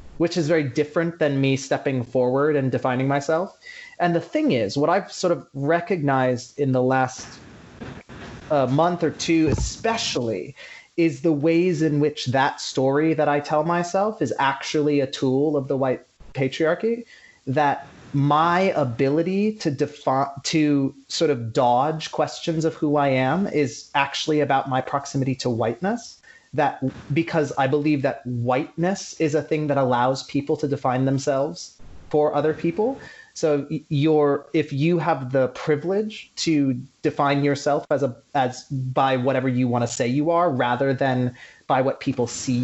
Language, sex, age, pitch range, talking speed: English, male, 30-49, 135-165 Hz, 160 wpm